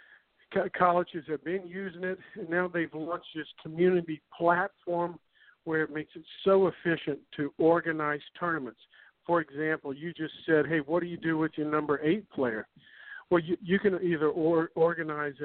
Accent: American